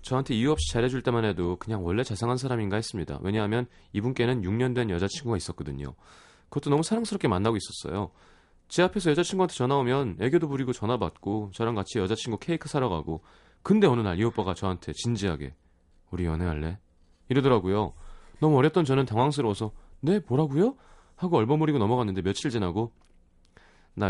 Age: 30-49